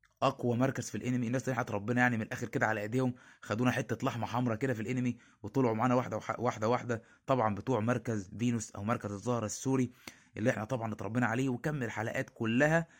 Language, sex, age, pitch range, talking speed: Arabic, male, 20-39, 115-140 Hz, 195 wpm